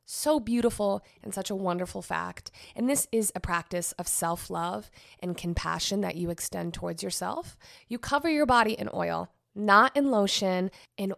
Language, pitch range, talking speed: English, 170-205 Hz, 165 wpm